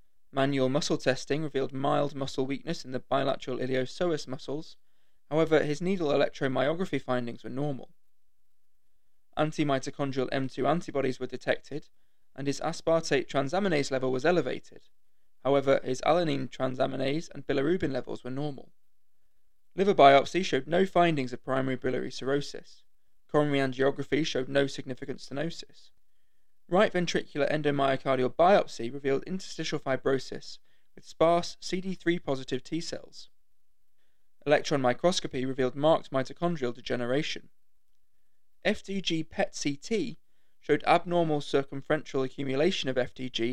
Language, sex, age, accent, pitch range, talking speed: English, male, 20-39, British, 130-155 Hz, 110 wpm